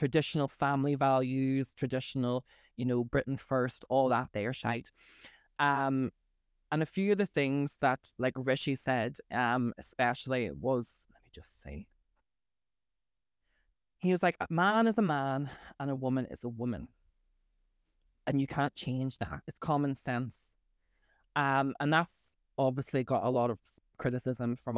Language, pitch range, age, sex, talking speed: English, 115-145 Hz, 20-39, male, 155 wpm